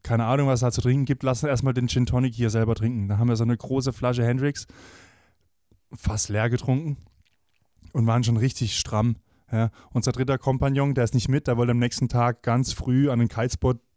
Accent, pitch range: German, 105-130 Hz